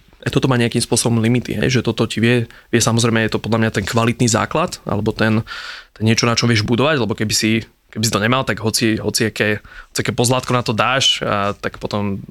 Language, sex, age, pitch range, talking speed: Slovak, male, 20-39, 110-120 Hz, 235 wpm